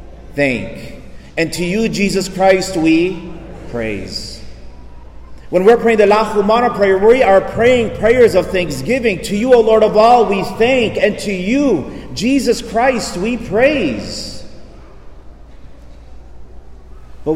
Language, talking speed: English, 120 wpm